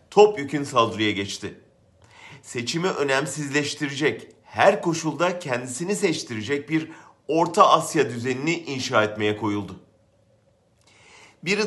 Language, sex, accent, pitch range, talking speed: German, male, Turkish, 115-170 Hz, 95 wpm